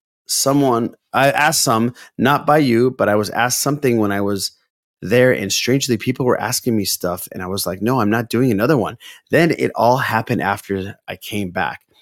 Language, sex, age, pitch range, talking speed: English, male, 30-49, 100-125 Hz, 205 wpm